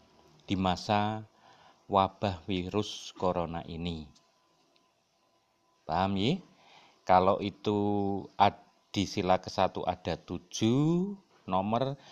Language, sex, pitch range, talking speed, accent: Indonesian, male, 95-130 Hz, 80 wpm, native